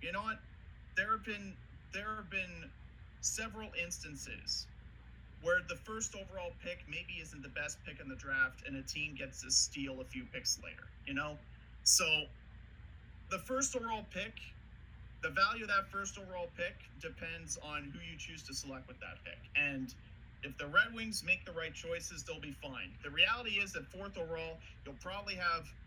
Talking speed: 180 wpm